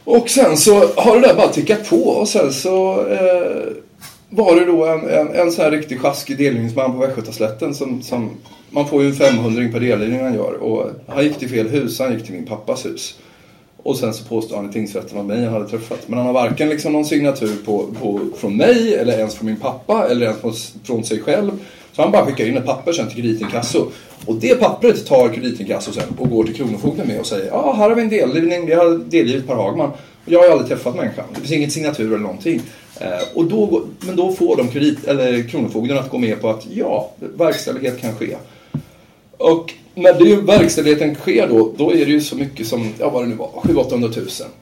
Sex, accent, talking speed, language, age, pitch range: male, native, 230 wpm, Swedish, 30-49, 115-165 Hz